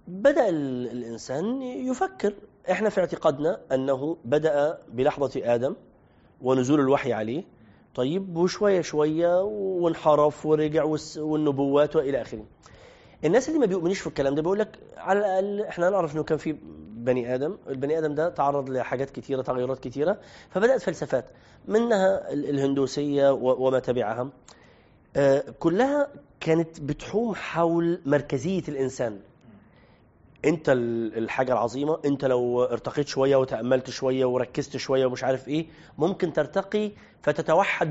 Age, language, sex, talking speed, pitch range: 30-49, Arabic, male, 120 wpm, 130-170 Hz